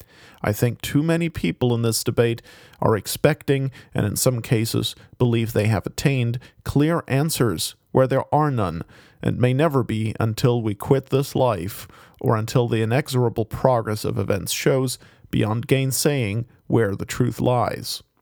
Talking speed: 155 wpm